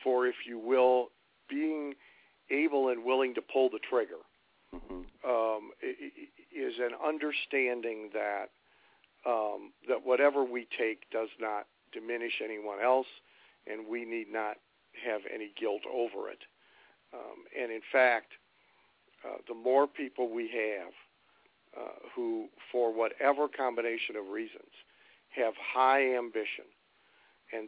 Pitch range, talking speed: 115-140 Hz, 125 wpm